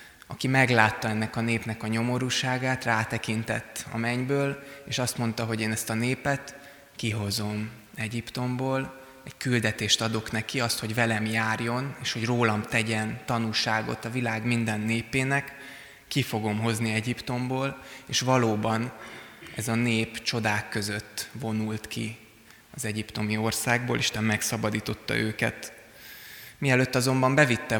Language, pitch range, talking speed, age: Hungarian, 110-125 Hz, 125 wpm, 20-39